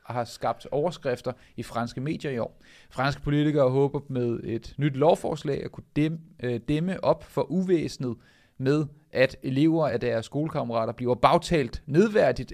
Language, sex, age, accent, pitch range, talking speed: Danish, male, 30-49, native, 125-160 Hz, 150 wpm